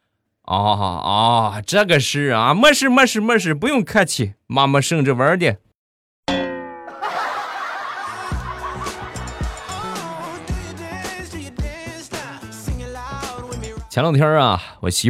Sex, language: male, Chinese